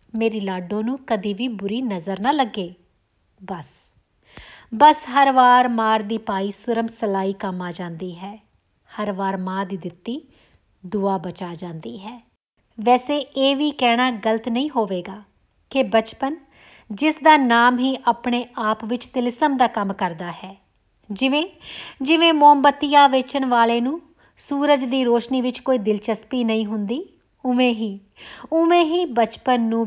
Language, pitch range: Punjabi, 210-270 Hz